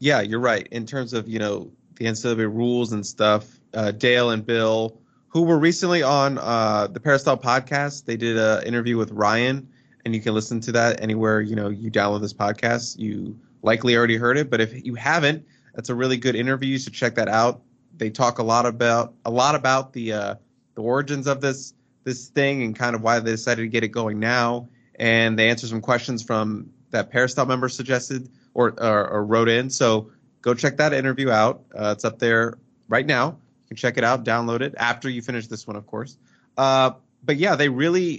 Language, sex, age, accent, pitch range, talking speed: English, male, 20-39, American, 115-130 Hz, 210 wpm